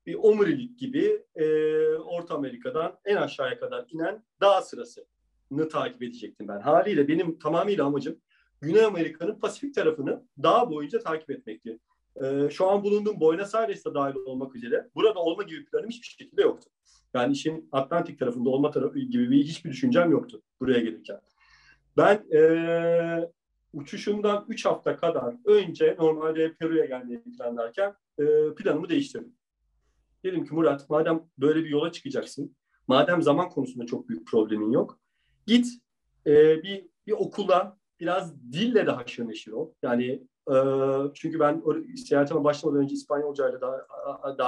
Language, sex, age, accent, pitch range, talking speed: Turkish, male, 40-59, native, 145-245 Hz, 145 wpm